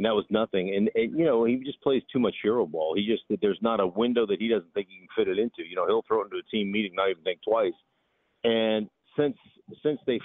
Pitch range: 100-115 Hz